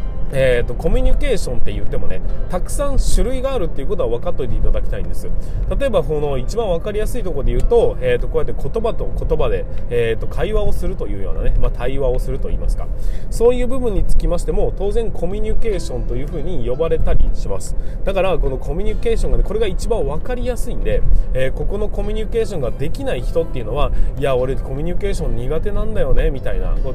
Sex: male